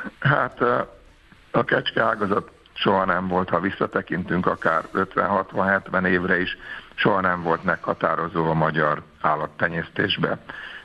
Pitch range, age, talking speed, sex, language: 80-95 Hz, 60-79, 110 wpm, male, Hungarian